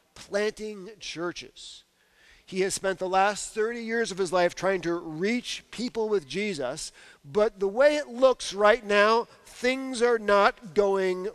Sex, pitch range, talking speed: male, 180-235 Hz, 155 wpm